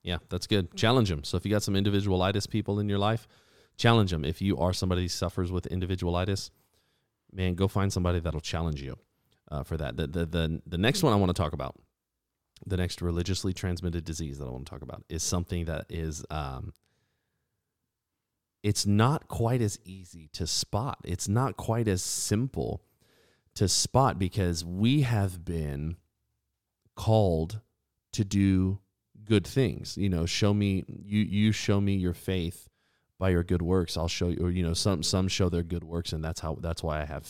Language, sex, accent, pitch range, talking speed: English, male, American, 80-100 Hz, 185 wpm